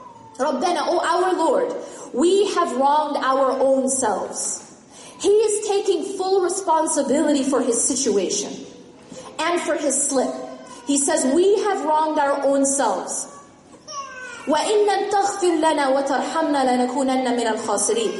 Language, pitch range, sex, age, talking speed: English, 275-360 Hz, female, 20-39, 100 wpm